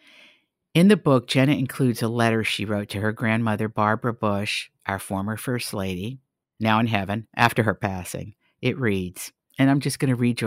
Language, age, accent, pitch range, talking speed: English, 50-69, American, 100-125 Hz, 190 wpm